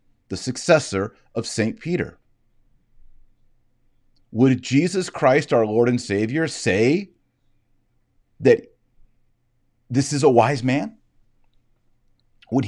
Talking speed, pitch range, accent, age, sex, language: 95 wpm, 100-125 Hz, American, 40-59, male, English